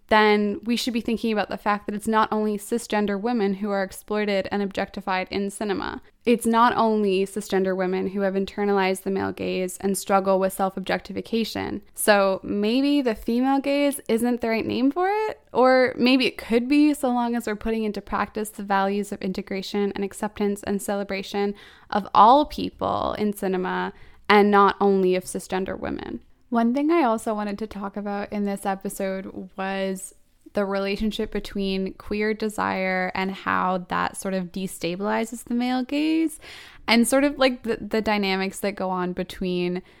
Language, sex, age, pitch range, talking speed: English, female, 10-29, 190-220 Hz, 175 wpm